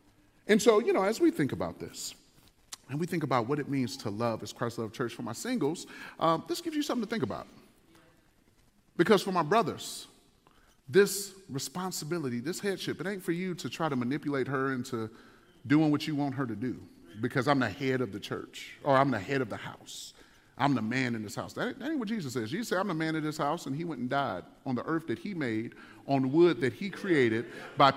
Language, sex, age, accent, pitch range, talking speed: English, male, 40-59, American, 135-200 Hz, 230 wpm